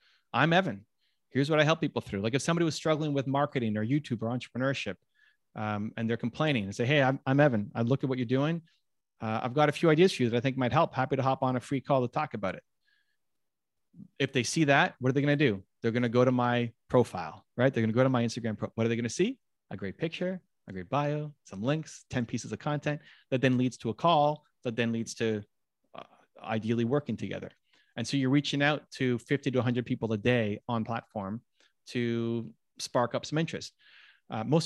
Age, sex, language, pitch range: 30-49, male, English, 120-150 Hz